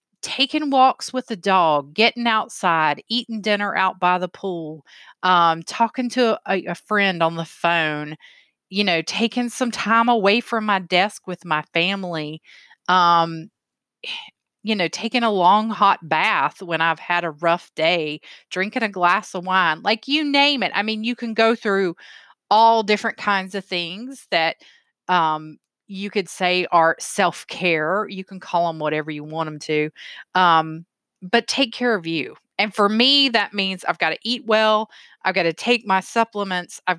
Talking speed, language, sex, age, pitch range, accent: 175 wpm, English, female, 30-49, 170-230 Hz, American